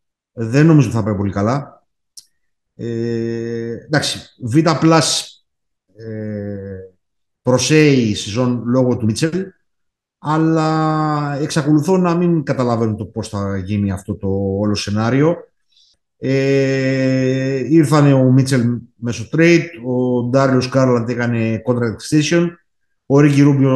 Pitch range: 115-145 Hz